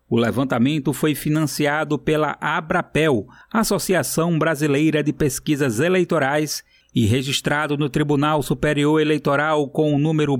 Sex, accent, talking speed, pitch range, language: male, Brazilian, 115 wpm, 145-170 Hz, Portuguese